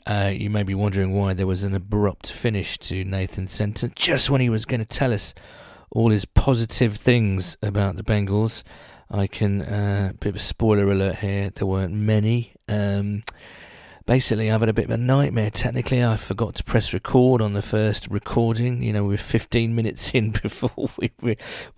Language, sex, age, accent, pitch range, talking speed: English, male, 40-59, British, 100-120 Hz, 195 wpm